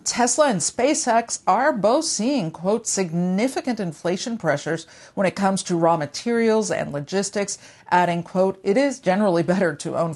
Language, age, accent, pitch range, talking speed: English, 50-69, American, 165-220 Hz, 155 wpm